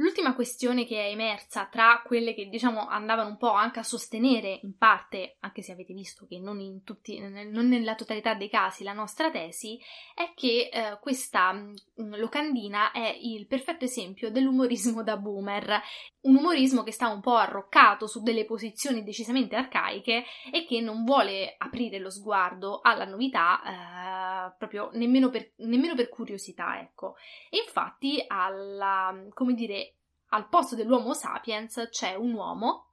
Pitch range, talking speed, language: 205-255 Hz, 150 wpm, English